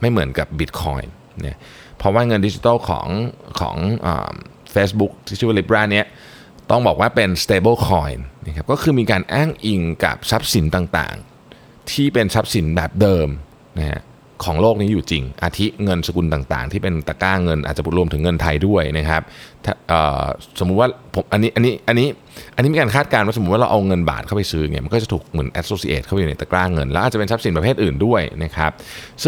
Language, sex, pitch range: Thai, male, 80-110 Hz